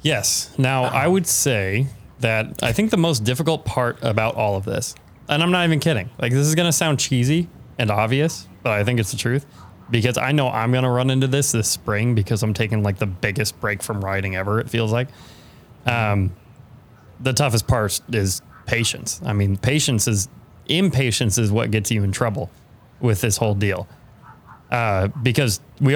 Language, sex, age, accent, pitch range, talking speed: English, male, 20-39, American, 110-140 Hz, 195 wpm